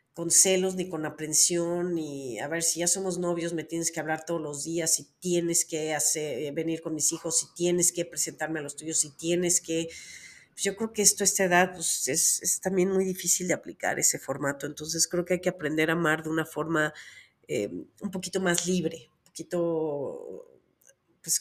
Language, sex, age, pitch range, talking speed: Spanish, female, 40-59, 155-185 Hz, 205 wpm